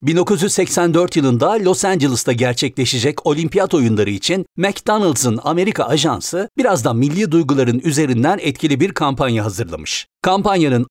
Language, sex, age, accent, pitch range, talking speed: Turkish, male, 60-79, native, 135-190 Hz, 115 wpm